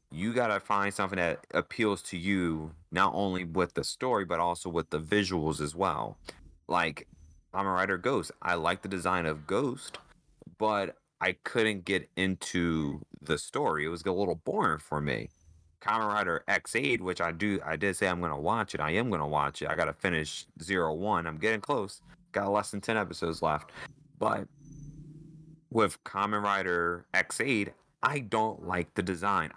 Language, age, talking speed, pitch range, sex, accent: English, 30-49, 185 wpm, 85-115 Hz, male, American